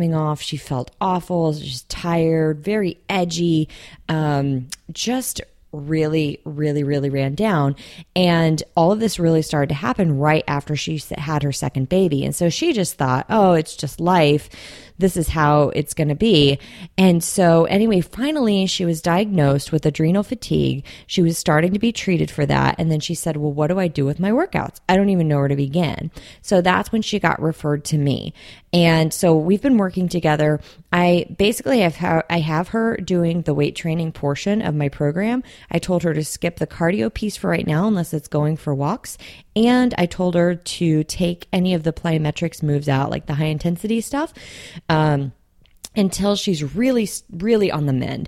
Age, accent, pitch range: 20-39, American, 150-190 Hz